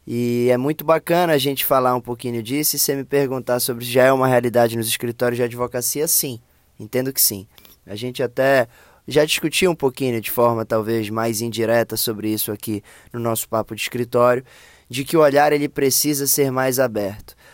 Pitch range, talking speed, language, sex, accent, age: 120-155 Hz, 195 wpm, Portuguese, male, Brazilian, 20-39